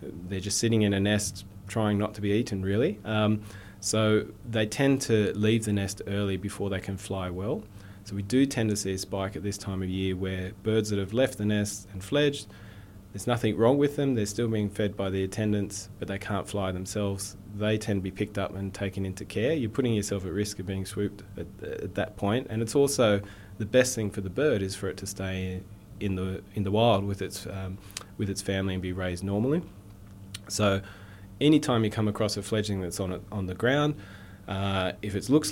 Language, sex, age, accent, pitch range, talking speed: English, male, 20-39, Australian, 95-110 Hz, 225 wpm